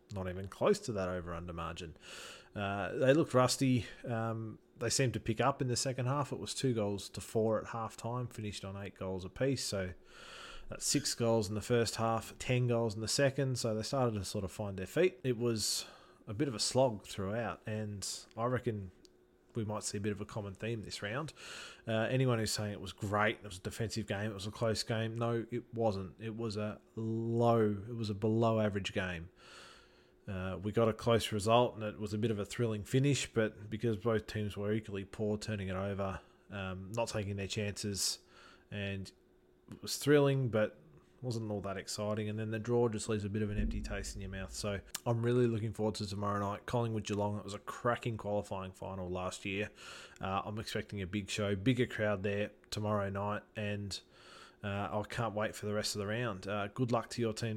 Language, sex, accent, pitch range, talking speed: English, male, Australian, 100-115 Hz, 215 wpm